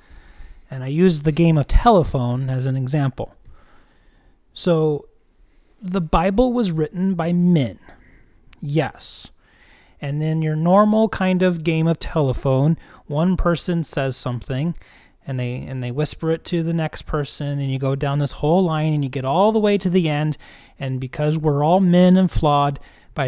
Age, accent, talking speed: 30-49, American, 165 wpm